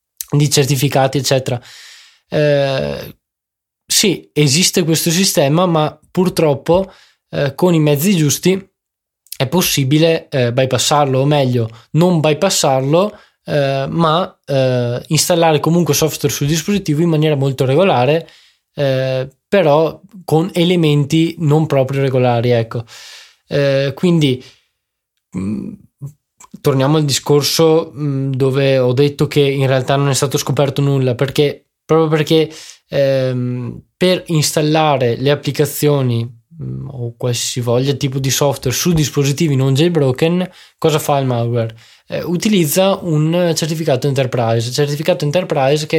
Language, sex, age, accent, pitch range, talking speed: Italian, male, 20-39, native, 135-165 Hz, 120 wpm